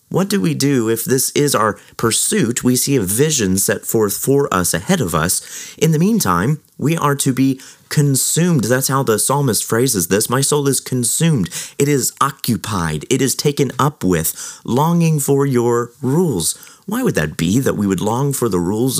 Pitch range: 105-140 Hz